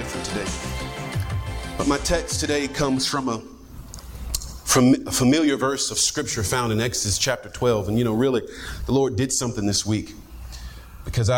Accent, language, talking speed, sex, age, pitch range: American, English, 165 wpm, male, 40-59, 105-135 Hz